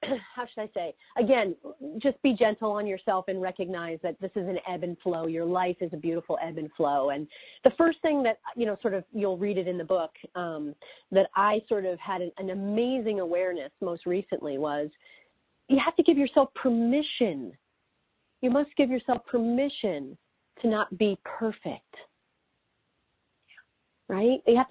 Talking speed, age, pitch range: 175 wpm, 40-59, 185-260 Hz